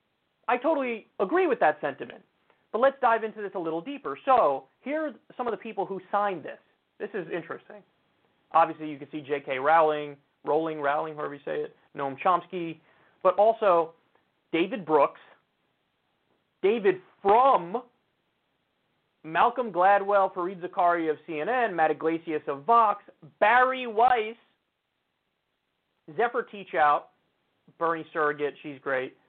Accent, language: American, English